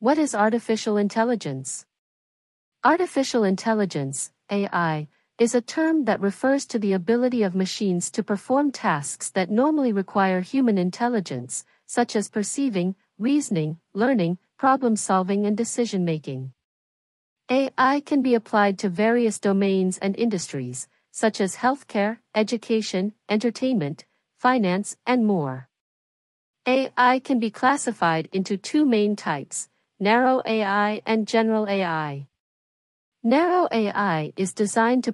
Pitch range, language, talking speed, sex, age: 185-240 Hz, English, 120 wpm, female, 50-69